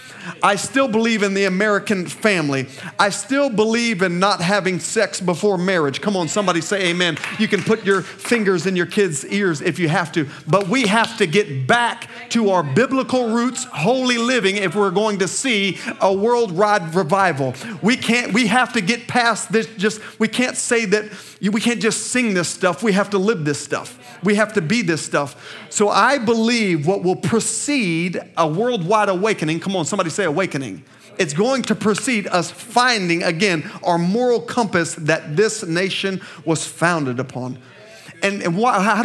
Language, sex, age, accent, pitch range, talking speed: English, male, 40-59, American, 160-225 Hz, 180 wpm